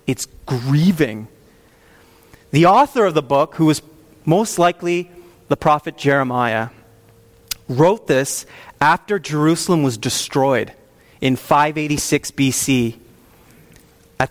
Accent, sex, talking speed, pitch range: American, male, 100 wpm, 130-175 Hz